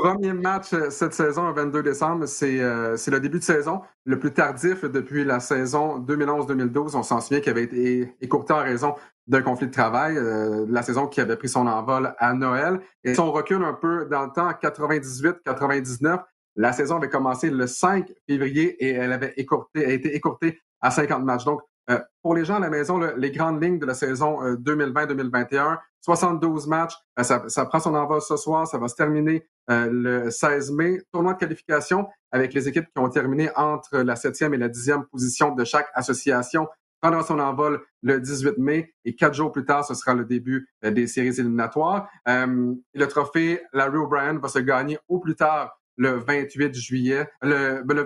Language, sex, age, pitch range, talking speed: French, male, 30-49, 130-160 Hz, 200 wpm